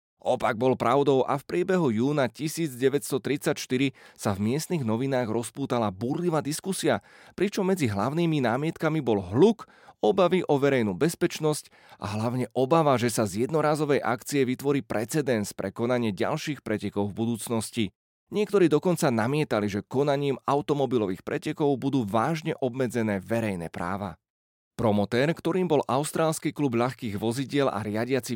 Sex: male